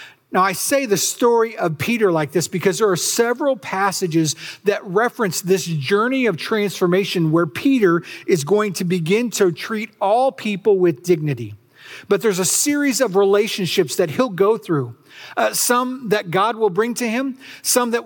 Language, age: English, 50-69